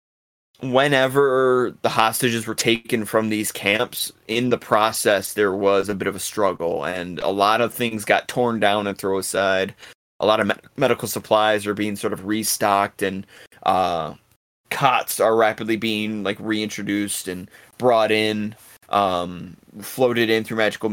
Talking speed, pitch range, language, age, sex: 160 wpm, 100-115 Hz, English, 20-39, male